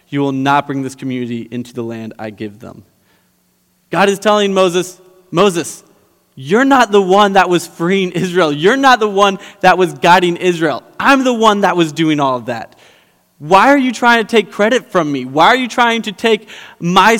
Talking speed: 200 wpm